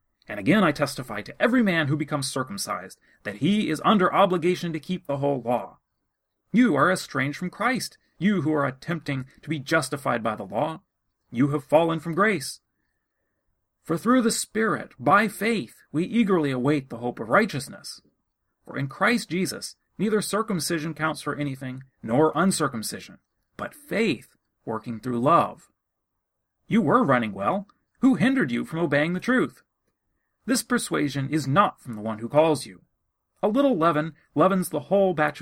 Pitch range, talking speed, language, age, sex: 140-205 Hz, 165 wpm, English, 30-49, male